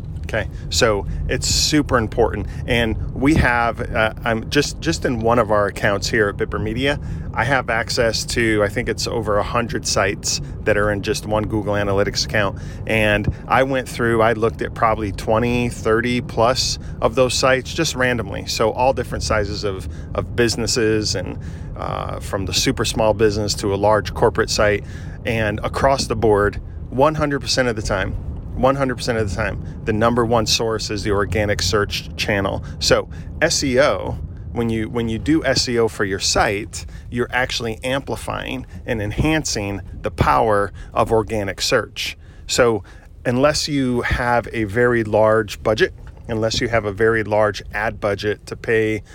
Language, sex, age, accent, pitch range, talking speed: English, male, 40-59, American, 100-120 Hz, 160 wpm